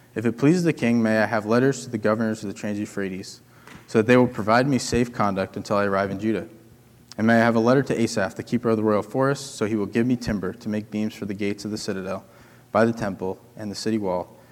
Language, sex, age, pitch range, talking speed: English, male, 20-39, 100-120 Hz, 265 wpm